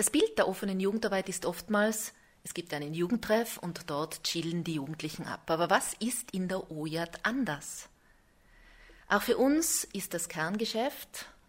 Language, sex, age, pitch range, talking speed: German, female, 30-49, 165-210 Hz, 155 wpm